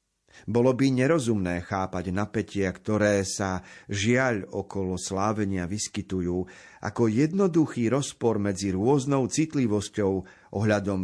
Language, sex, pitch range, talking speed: Slovak, male, 105-135 Hz, 100 wpm